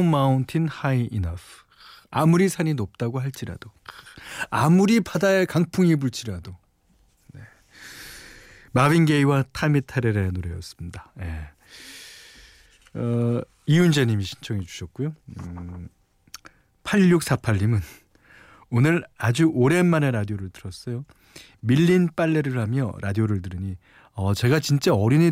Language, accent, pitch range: Korean, native, 100-155 Hz